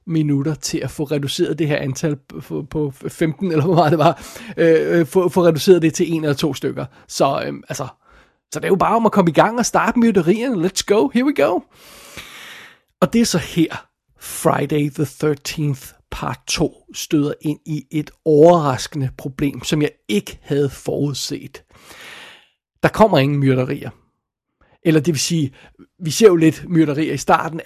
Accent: native